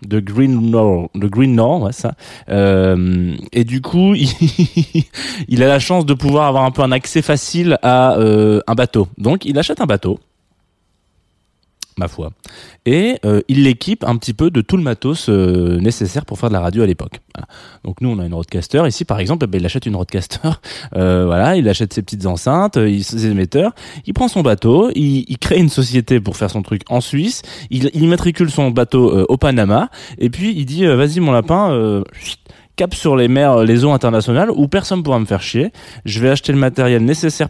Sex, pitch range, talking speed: male, 100-140 Hz, 210 wpm